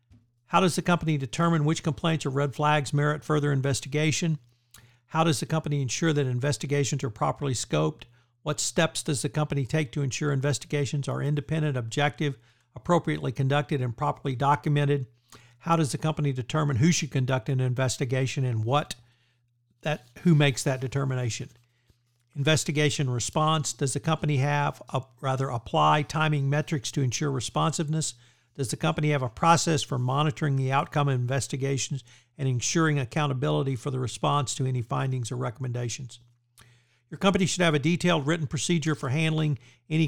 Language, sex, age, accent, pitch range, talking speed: English, male, 60-79, American, 125-150 Hz, 155 wpm